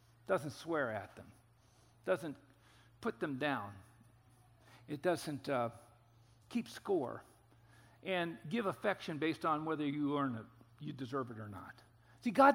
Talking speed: 140 wpm